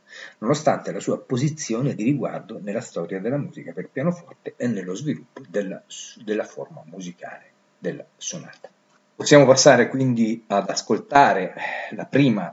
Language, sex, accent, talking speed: Italian, male, native, 135 wpm